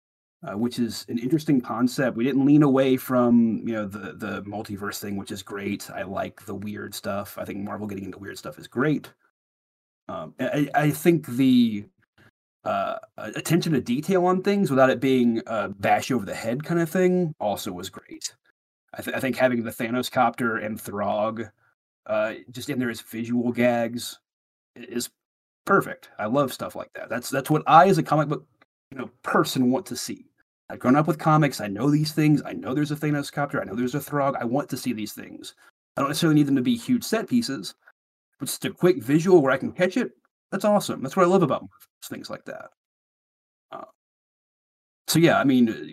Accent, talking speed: American, 205 wpm